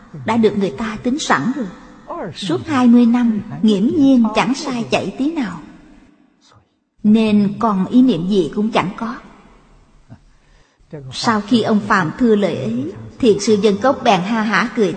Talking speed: 160 wpm